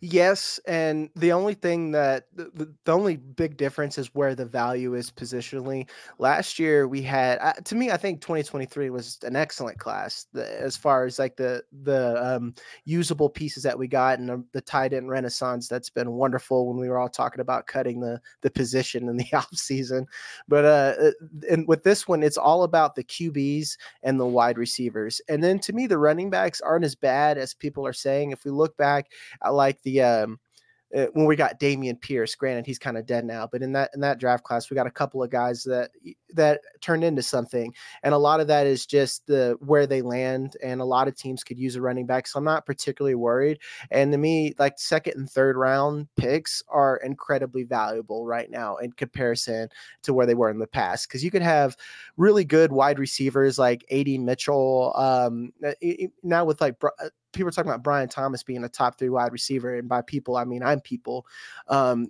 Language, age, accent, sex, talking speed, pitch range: English, 20-39, American, male, 210 wpm, 125-155 Hz